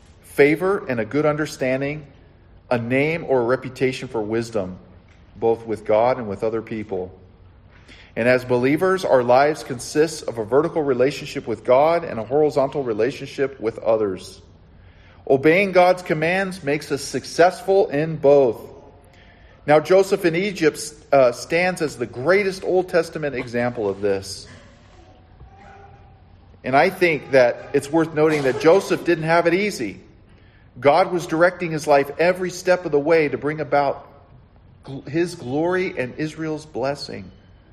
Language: English